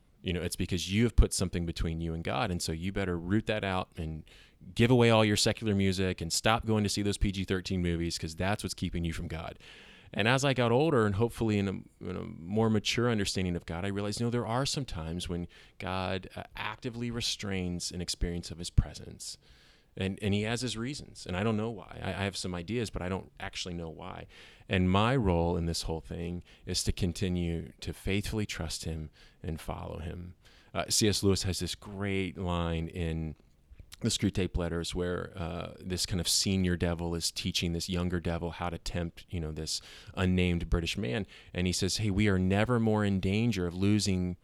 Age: 30-49